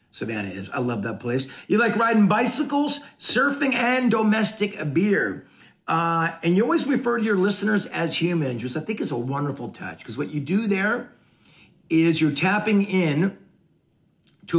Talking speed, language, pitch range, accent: 170 wpm, English, 150-225 Hz, American